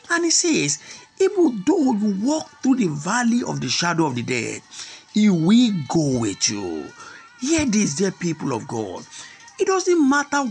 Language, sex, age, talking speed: English, male, 50-69, 175 wpm